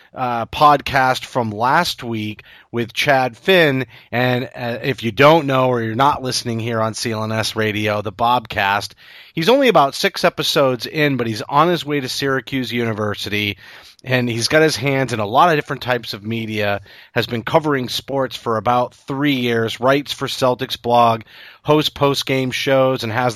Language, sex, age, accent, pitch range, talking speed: English, male, 30-49, American, 110-135 Hz, 175 wpm